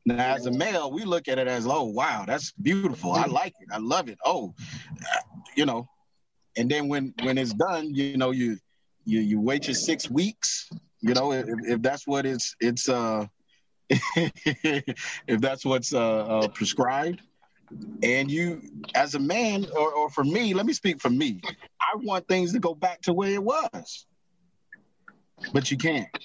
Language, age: English, 30-49